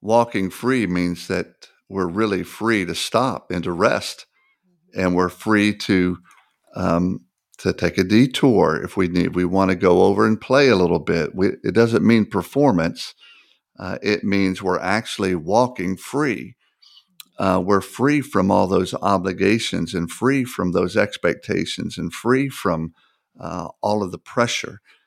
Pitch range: 90-110 Hz